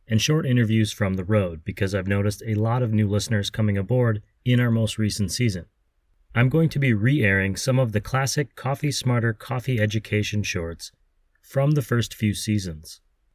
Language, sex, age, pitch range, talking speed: English, male, 30-49, 100-120 Hz, 180 wpm